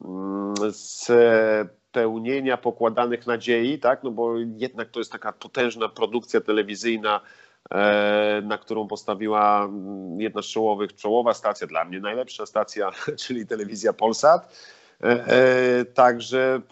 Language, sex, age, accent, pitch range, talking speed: Polish, male, 40-59, native, 105-125 Hz, 110 wpm